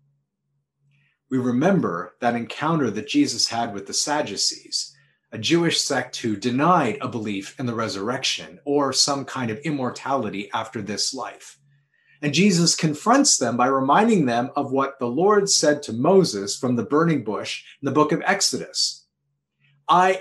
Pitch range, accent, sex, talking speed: 120-165 Hz, American, male, 155 wpm